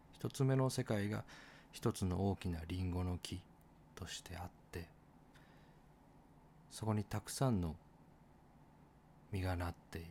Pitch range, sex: 90-135 Hz, male